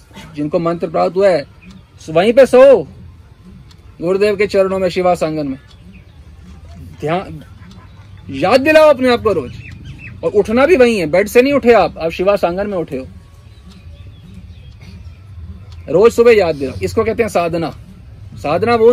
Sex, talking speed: male, 145 wpm